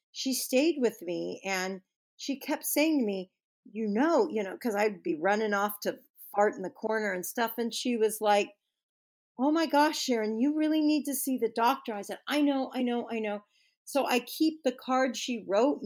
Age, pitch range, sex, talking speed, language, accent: 50-69, 210-285 Hz, female, 210 wpm, English, American